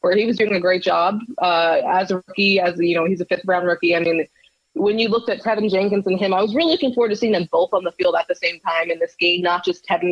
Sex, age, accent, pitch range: female, 20-39, American, 170-215 Hz